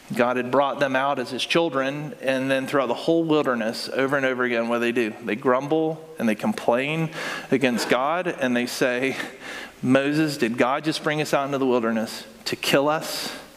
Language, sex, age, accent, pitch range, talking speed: English, male, 40-59, American, 125-155 Hz, 200 wpm